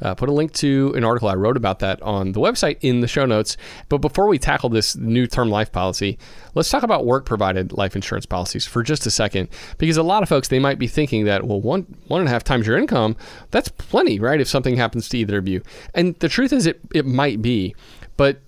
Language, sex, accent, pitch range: English, male, American, 105-135 Hz